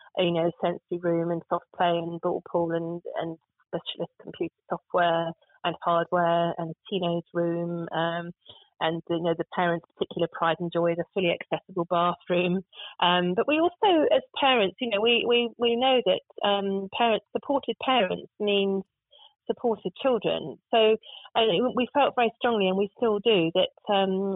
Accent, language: British, English